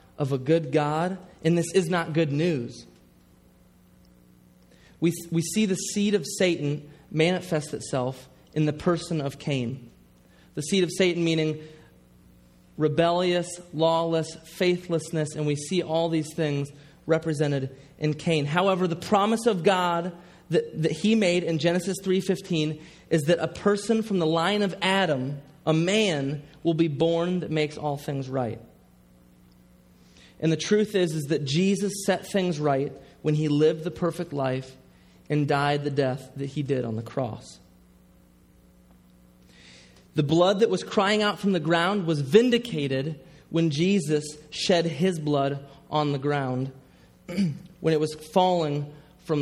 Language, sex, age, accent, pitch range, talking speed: English, male, 30-49, American, 140-180 Hz, 150 wpm